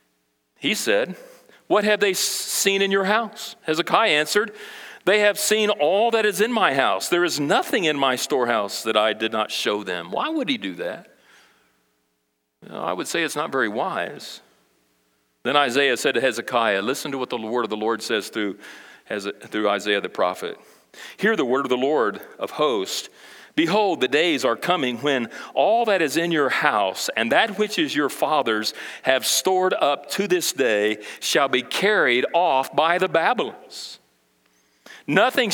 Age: 40-59